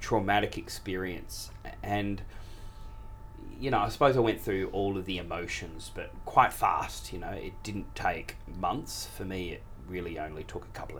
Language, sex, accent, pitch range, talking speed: English, male, Australian, 90-110 Hz, 170 wpm